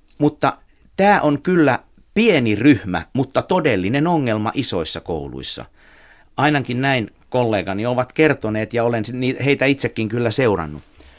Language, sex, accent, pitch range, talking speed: Finnish, male, native, 105-150 Hz, 120 wpm